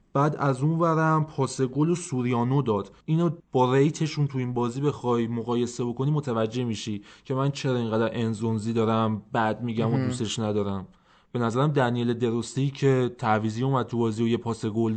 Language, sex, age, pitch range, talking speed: Persian, male, 20-39, 120-155 Hz, 175 wpm